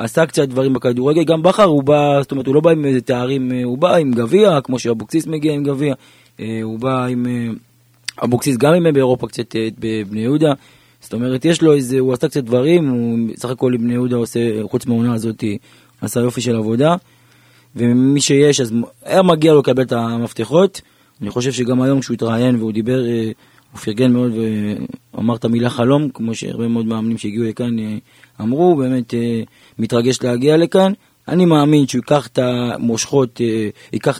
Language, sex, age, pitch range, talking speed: Hebrew, male, 20-39, 120-165 Hz, 180 wpm